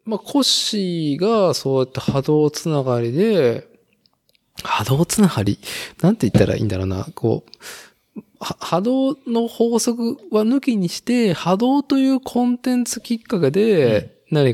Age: 20-39